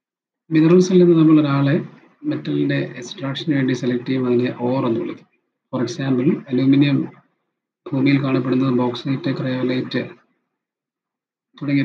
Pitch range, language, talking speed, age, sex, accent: 125-150 Hz, Malayalam, 95 wpm, 30-49, male, native